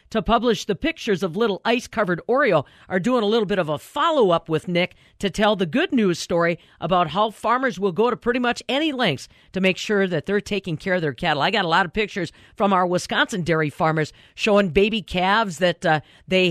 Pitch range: 175-230 Hz